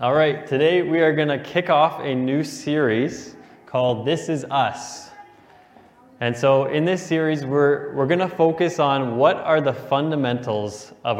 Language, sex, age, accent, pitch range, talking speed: English, male, 20-39, American, 120-155 Hz, 165 wpm